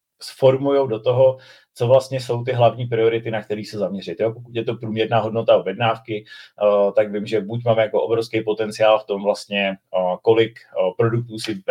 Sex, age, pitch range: male, 30-49, 100-115 Hz